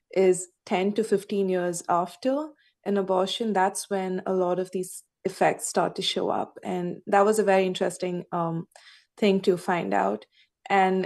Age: 20-39